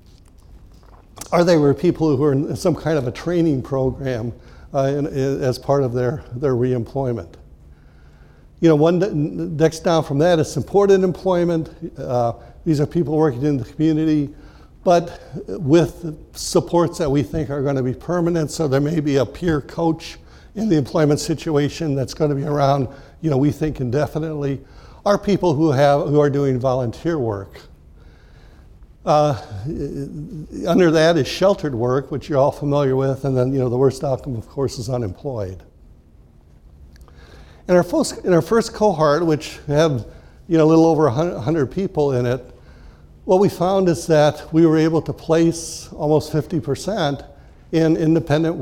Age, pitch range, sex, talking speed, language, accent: 60-79, 130-160 Hz, male, 165 wpm, English, American